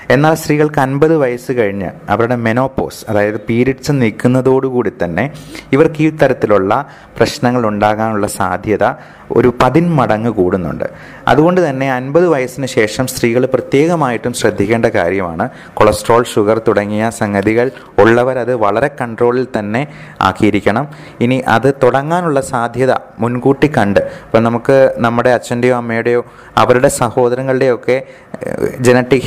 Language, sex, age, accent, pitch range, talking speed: Malayalam, male, 30-49, native, 115-135 Hz, 105 wpm